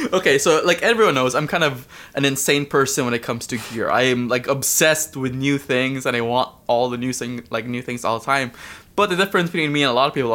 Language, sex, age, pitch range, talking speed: English, male, 20-39, 115-140 Hz, 265 wpm